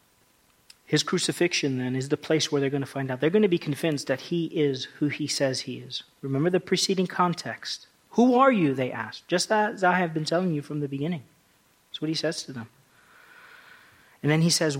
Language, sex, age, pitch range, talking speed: English, male, 40-59, 135-170 Hz, 220 wpm